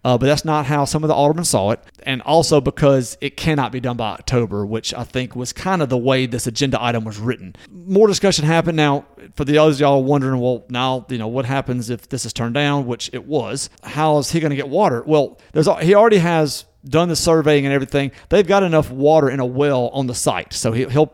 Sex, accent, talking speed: male, American, 240 wpm